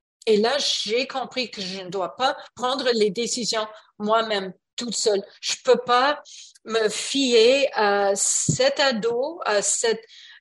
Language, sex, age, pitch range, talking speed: English, female, 50-69, 210-280 Hz, 150 wpm